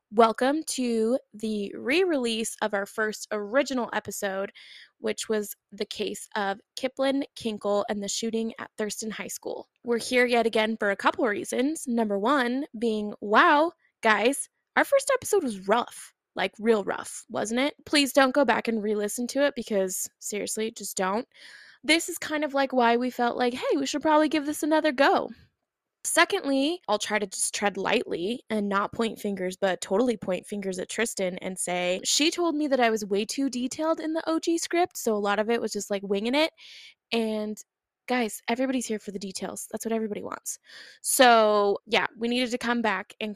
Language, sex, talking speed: English, female, 190 wpm